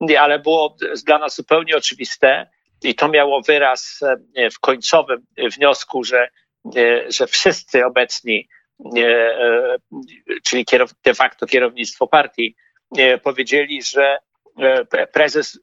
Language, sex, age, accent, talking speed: Polish, male, 50-69, native, 95 wpm